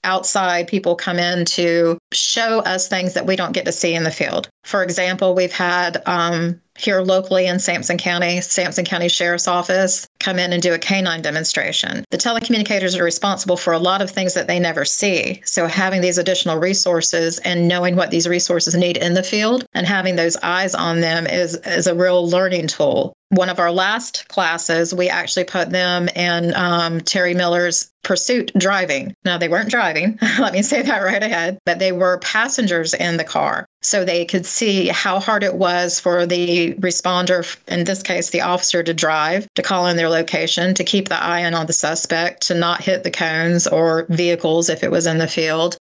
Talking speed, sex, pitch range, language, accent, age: 200 wpm, female, 170-185 Hz, English, American, 30-49